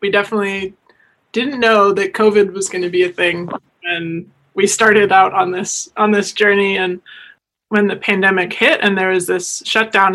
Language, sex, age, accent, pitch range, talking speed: English, male, 20-39, American, 190-225 Hz, 185 wpm